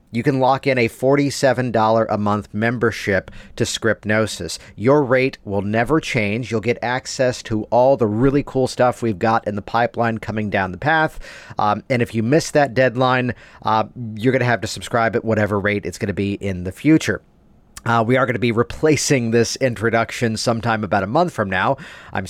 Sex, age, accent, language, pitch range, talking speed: male, 40-59, American, English, 105-135 Hz, 200 wpm